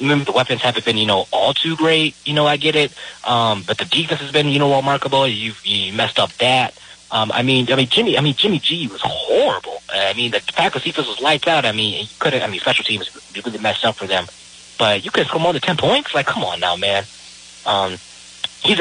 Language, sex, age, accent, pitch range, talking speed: English, male, 20-39, American, 95-125 Hz, 250 wpm